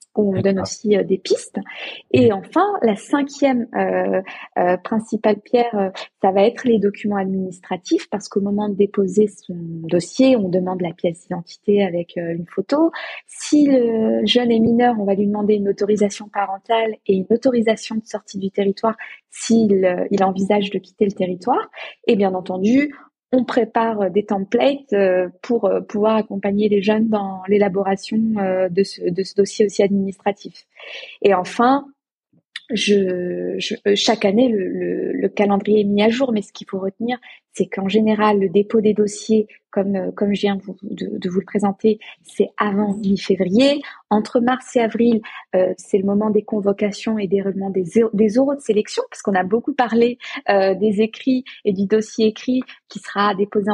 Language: French